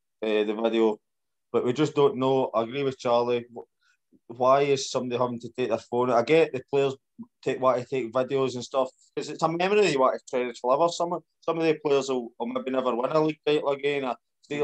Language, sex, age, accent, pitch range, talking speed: English, male, 20-39, British, 115-140 Hz, 235 wpm